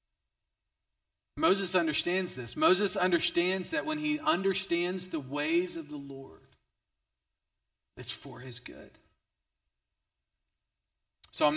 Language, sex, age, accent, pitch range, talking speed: English, male, 40-59, American, 130-195 Hz, 100 wpm